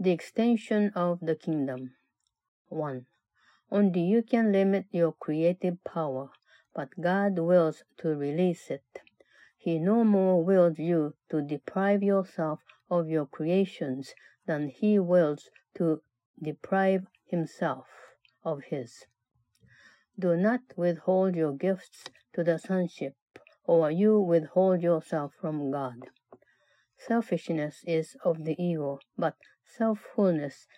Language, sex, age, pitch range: Japanese, female, 60-79, 155-190 Hz